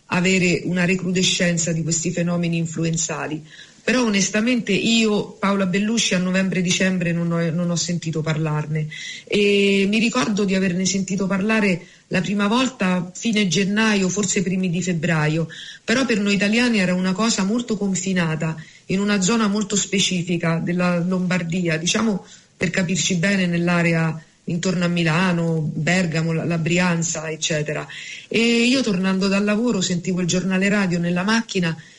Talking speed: 140 wpm